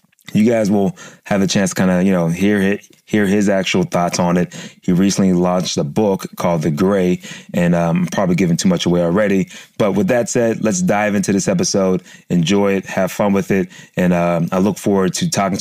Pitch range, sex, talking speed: 85-105 Hz, male, 225 wpm